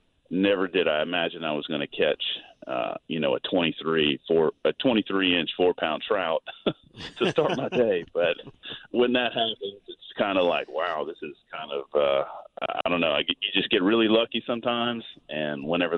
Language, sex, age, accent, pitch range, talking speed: English, male, 40-59, American, 80-110 Hz, 185 wpm